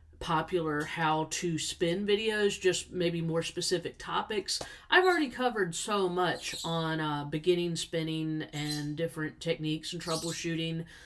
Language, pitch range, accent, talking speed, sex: English, 165-225 Hz, American, 120 wpm, female